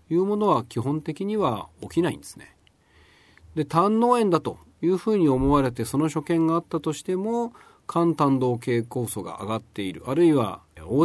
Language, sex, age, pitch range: Japanese, male, 40-59, 105-165 Hz